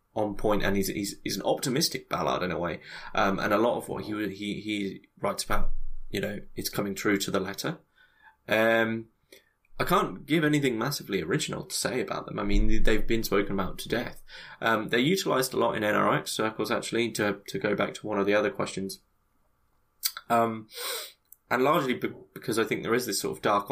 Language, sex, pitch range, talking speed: English, male, 95-110 Hz, 205 wpm